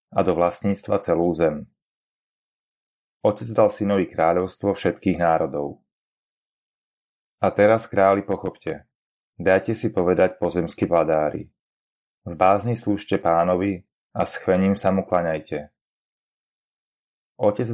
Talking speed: 100 wpm